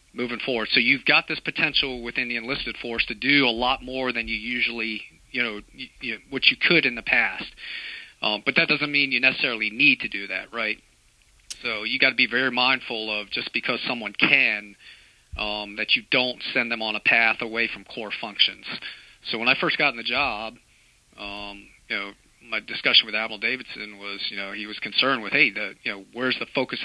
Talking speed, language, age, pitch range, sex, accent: 210 wpm, English, 40-59, 105-125 Hz, male, American